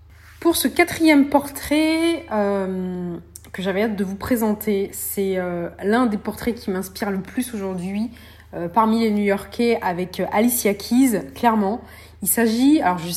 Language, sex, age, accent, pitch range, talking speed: French, female, 20-39, French, 195-245 Hz, 150 wpm